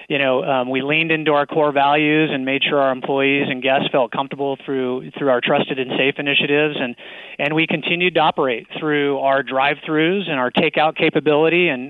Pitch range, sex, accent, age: 130-145 Hz, male, American, 30-49